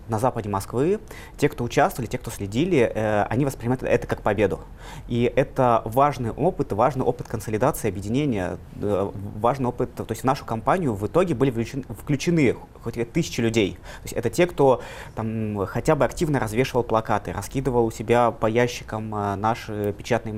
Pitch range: 110-135 Hz